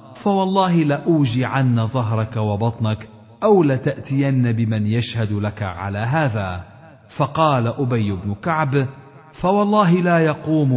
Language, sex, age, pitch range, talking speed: Arabic, male, 50-69, 105-155 Hz, 105 wpm